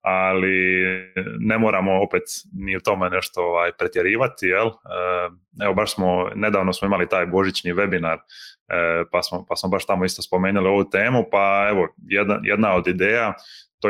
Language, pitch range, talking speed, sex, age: Croatian, 90-100 Hz, 160 wpm, male, 20-39